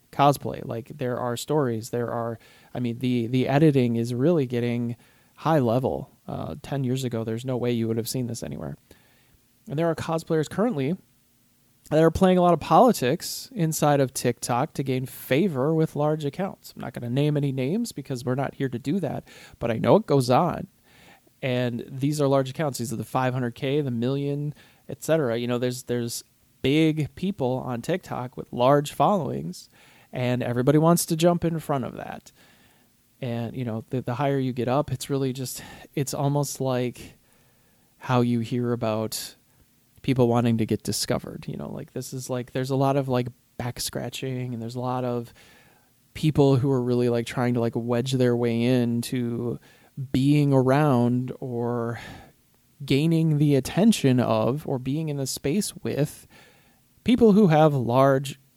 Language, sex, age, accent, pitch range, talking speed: English, male, 30-49, American, 120-145 Hz, 180 wpm